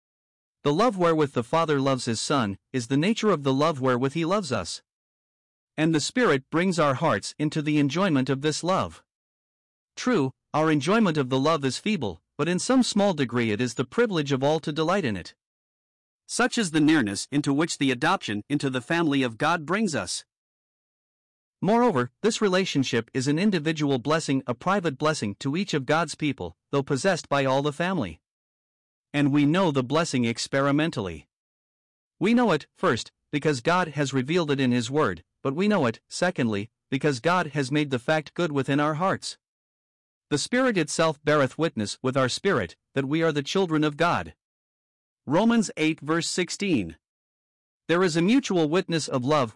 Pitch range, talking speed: 135-170 Hz, 180 wpm